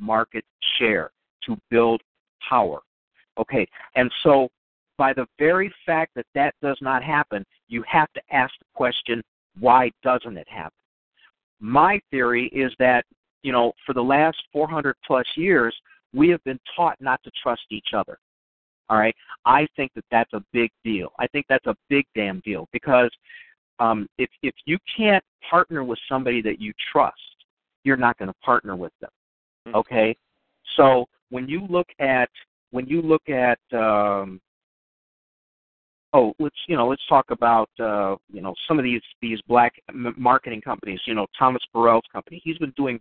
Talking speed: 165 wpm